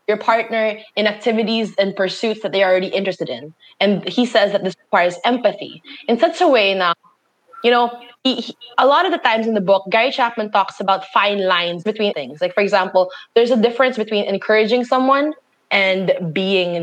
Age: 20-39